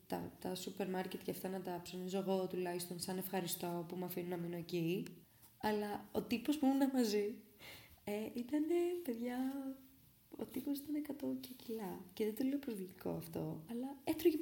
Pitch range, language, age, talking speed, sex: 175-225 Hz, Greek, 20-39, 165 wpm, female